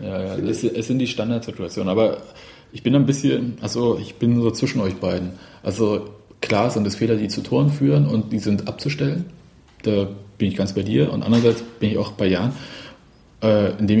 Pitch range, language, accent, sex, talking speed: 105-125 Hz, German, German, male, 195 wpm